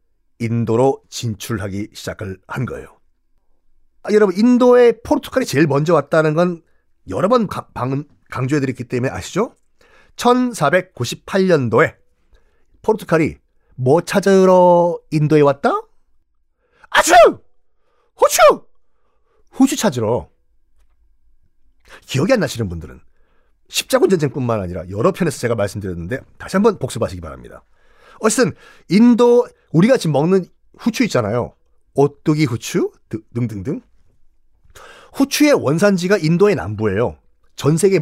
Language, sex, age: Korean, male, 40-59